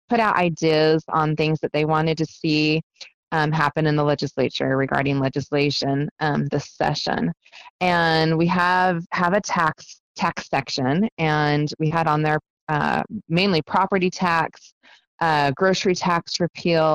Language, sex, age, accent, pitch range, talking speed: English, female, 20-39, American, 145-165 Hz, 145 wpm